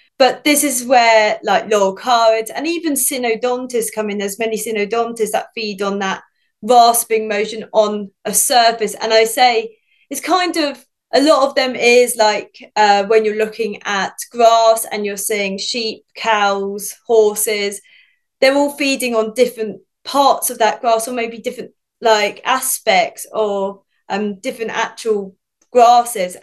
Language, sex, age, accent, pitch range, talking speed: English, female, 20-39, British, 215-255 Hz, 150 wpm